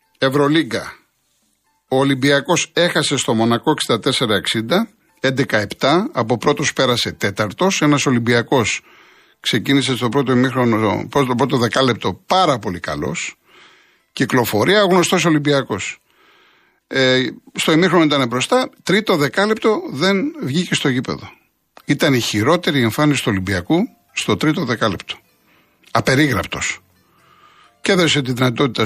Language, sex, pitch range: Greek, male, 125-170 Hz